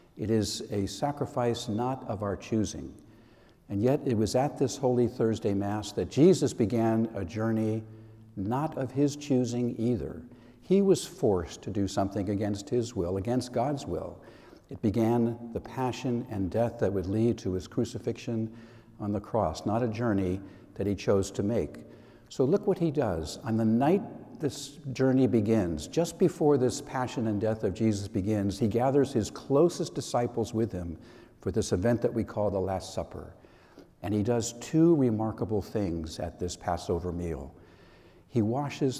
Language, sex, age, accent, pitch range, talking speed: English, male, 60-79, American, 105-130 Hz, 170 wpm